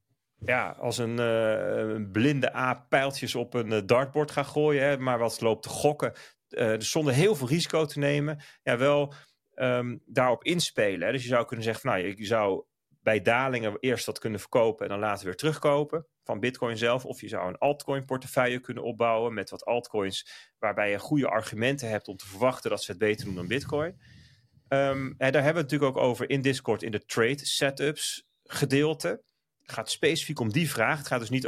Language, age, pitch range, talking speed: Dutch, 30-49, 120-145 Hz, 205 wpm